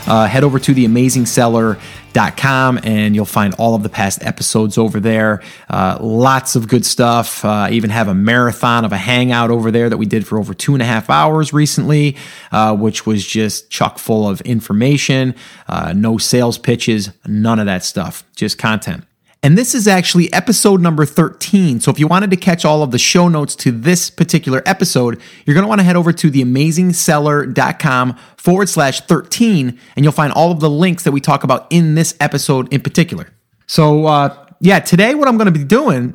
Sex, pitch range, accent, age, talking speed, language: male, 120-165 Hz, American, 30-49, 200 wpm, English